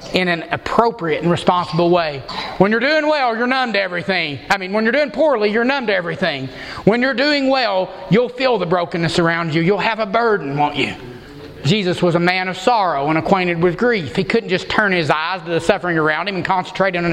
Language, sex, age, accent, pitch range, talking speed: English, male, 30-49, American, 170-220 Hz, 225 wpm